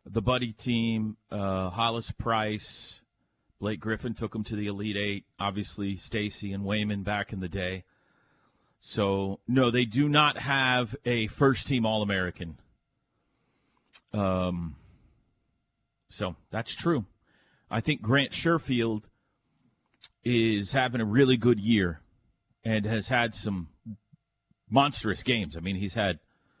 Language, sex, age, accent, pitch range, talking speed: English, male, 40-59, American, 100-140 Hz, 130 wpm